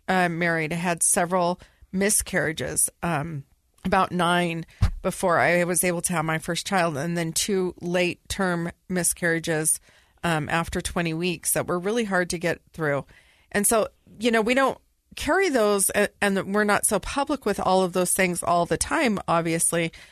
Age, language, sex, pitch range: 40-59, English, female, 175-220 Hz